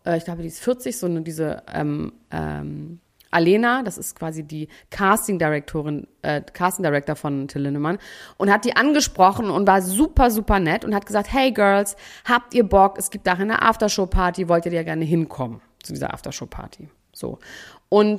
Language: German